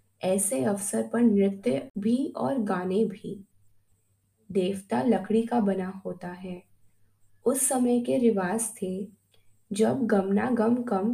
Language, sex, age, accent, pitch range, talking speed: Hindi, female, 20-39, native, 165-225 Hz, 125 wpm